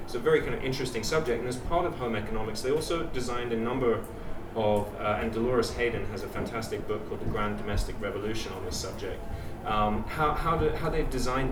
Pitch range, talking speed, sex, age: 105-125 Hz, 220 wpm, male, 30-49